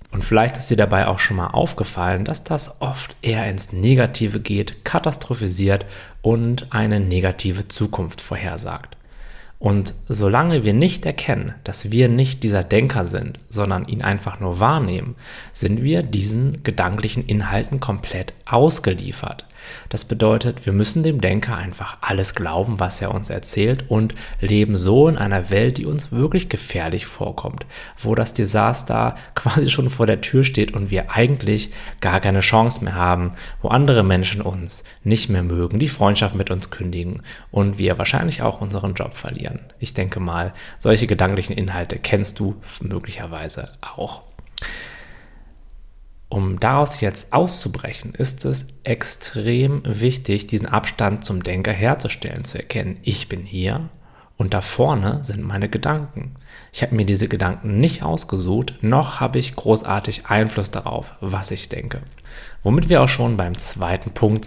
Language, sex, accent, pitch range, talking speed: German, male, German, 95-120 Hz, 150 wpm